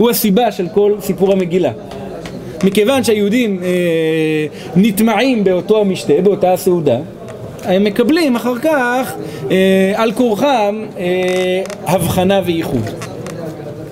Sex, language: male, Hebrew